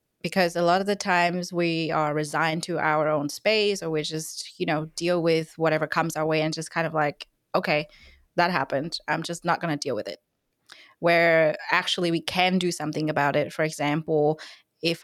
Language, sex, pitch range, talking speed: English, female, 155-190 Hz, 200 wpm